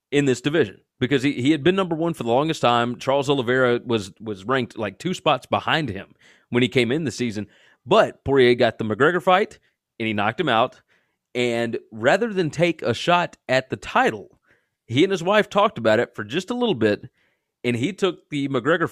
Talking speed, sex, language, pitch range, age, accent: 215 wpm, male, English, 120-165 Hz, 30-49, American